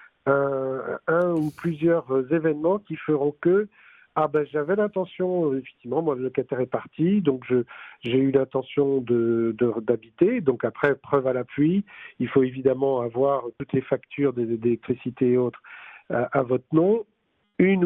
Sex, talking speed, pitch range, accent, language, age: male, 155 wpm, 130-170 Hz, French, French, 50-69